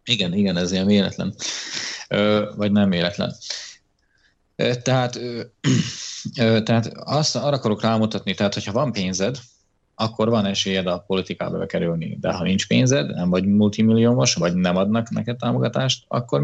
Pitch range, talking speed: 100-115 Hz, 150 wpm